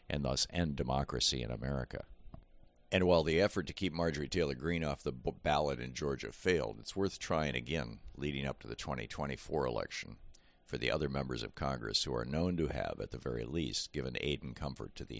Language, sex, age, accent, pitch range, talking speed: English, male, 50-69, American, 65-80 Hz, 210 wpm